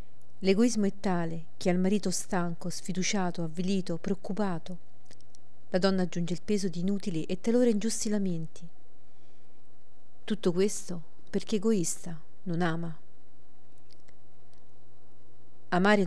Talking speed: 105 wpm